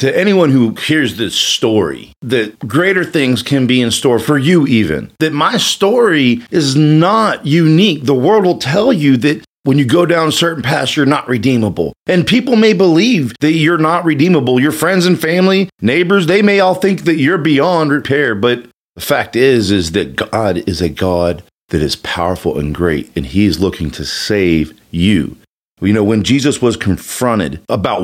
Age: 40-59